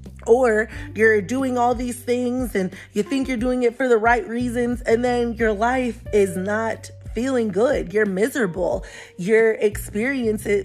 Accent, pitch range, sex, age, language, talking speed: American, 190-245 Hz, female, 20-39, English, 160 wpm